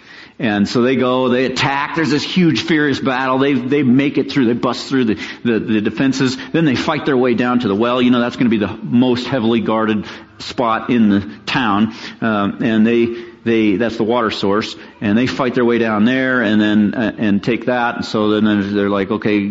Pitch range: 110-130 Hz